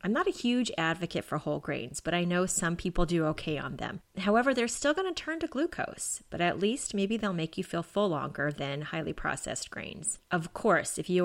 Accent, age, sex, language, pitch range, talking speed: American, 30-49, female, English, 160-225 Hz, 230 wpm